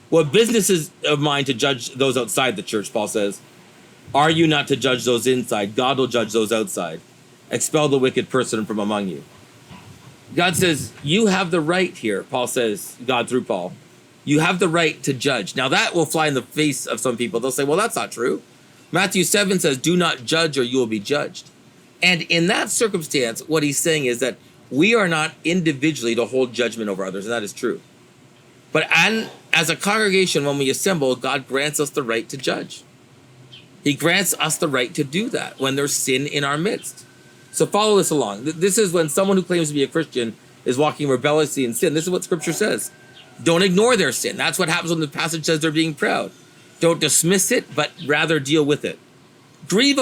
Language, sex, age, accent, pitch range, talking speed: English, male, 40-59, American, 130-175 Hz, 210 wpm